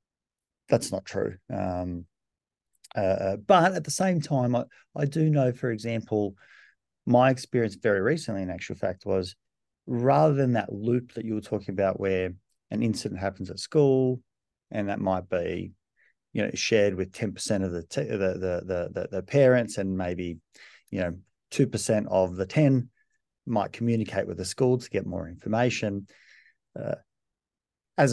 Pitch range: 95-125 Hz